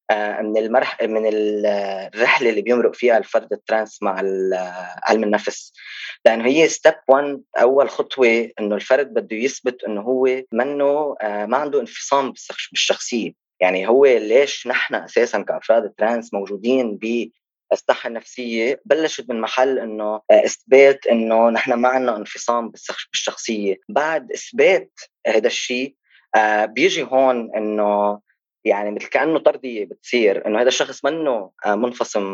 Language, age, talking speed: Arabic, 20-39, 130 wpm